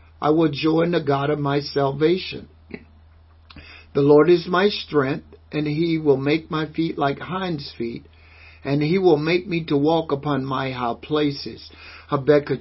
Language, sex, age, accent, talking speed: English, male, 60-79, American, 160 wpm